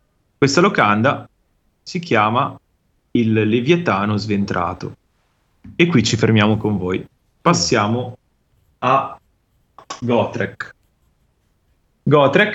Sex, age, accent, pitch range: male, 30-49, native, 105-160 Hz